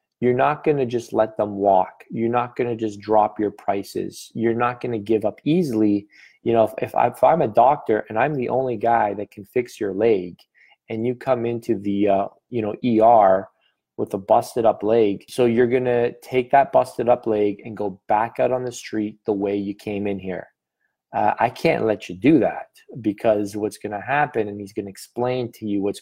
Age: 20-39